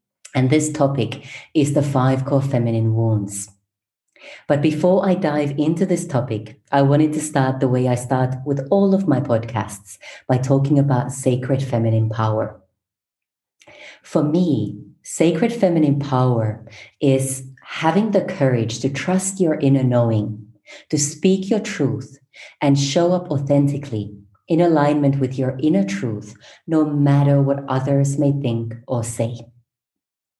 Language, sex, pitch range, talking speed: English, female, 120-150 Hz, 140 wpm